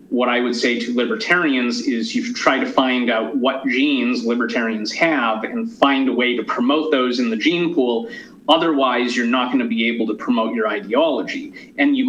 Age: 30-49